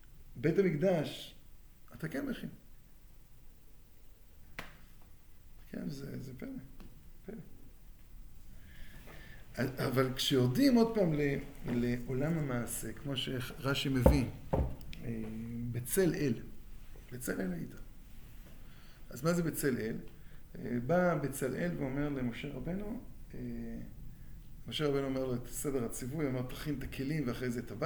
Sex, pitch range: male, 125-175 Hz